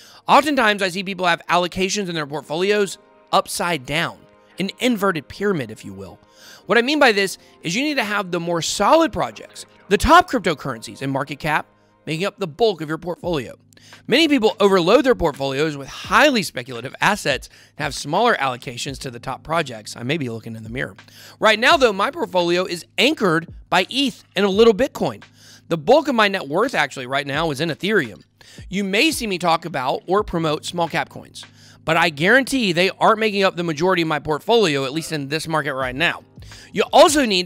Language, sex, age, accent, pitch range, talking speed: English, male, 30-49, American, 145-220 Hz, 200 wpm